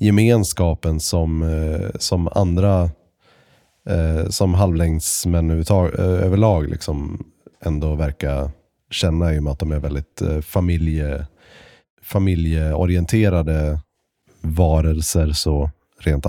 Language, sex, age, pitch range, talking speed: Swedish, male, 30-49, 80-100 Hz, 90 wpm